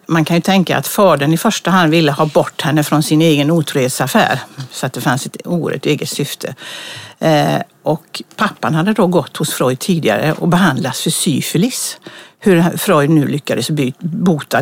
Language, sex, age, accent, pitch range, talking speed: Swedish, female, 60-79, native, 145-180 Hz, 170 wpm